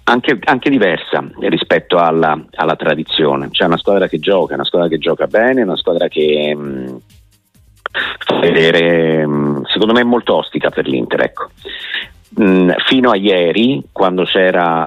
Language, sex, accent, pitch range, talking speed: Italian, male, native, 80-95 Hz, 150 wpm